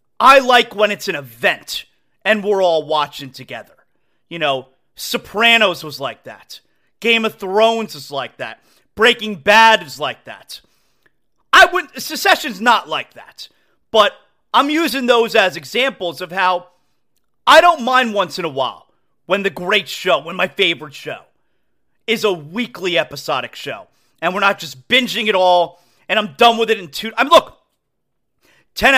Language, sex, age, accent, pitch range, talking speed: English, male, 30-49, American, 175-260 Hz, 165 wpm